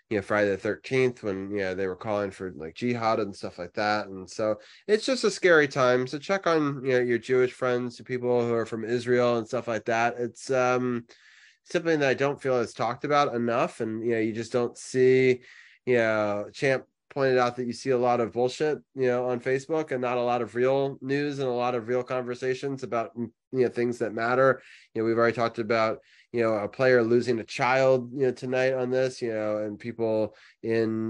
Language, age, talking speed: English, 20-39, 230 wpm